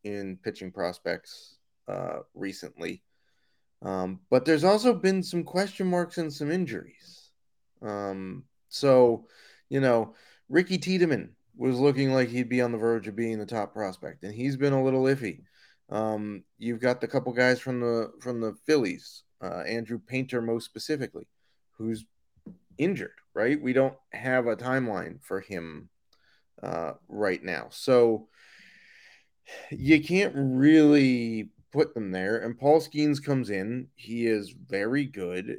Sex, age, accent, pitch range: male, 30-49, American, 105-135 Hz